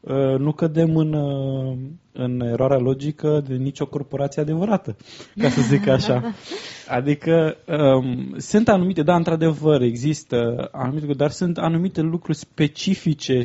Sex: male